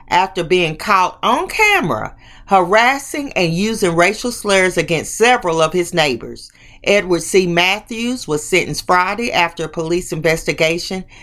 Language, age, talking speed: English, 40-59, 135 wpm